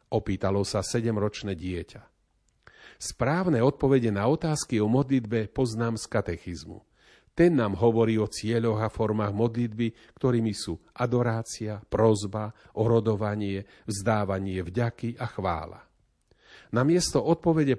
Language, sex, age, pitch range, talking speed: Slovak, male, 40-59, 105-145 Hz, 115 wpm